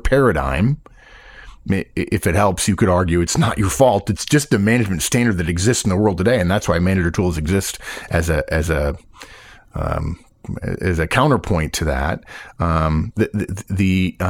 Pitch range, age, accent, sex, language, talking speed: 90-115 Hz, 40-59, American, male, English, 175 wpm